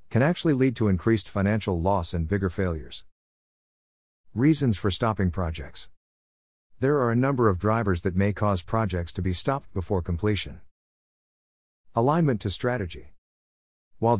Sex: male